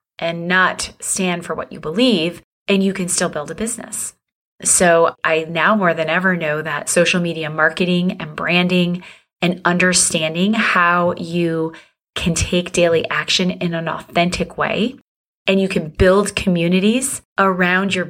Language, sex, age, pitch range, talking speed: English, female, 30-49, 175-215 Hz, 155 wpm